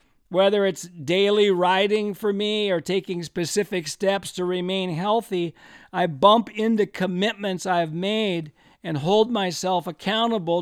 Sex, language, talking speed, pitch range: male, English, 130 wpm, 180-215 Hz